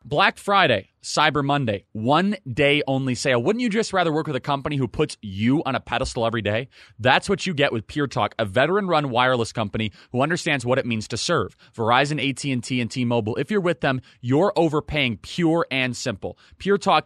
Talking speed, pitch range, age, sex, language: 200 wpm, 120-165 Hz, 30-49, male, English